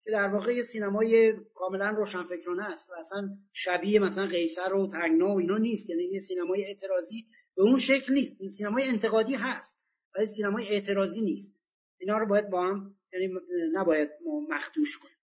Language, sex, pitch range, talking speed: Persian, male, 185-225 Hz, 170 wpm